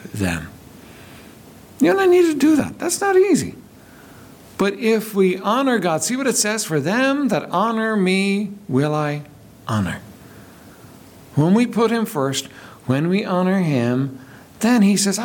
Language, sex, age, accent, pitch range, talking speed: English, male, 60-79, American, 150-240 Hz, 155 wpm